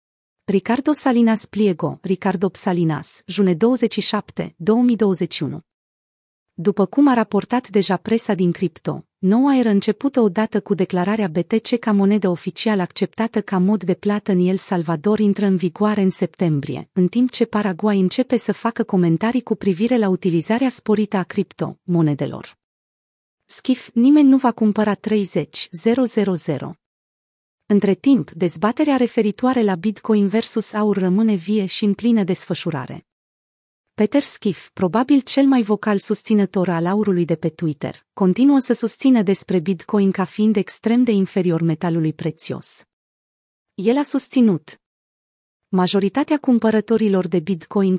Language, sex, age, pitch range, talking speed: Romanian, female, 30-49, 180-225 Hz, 135 wpm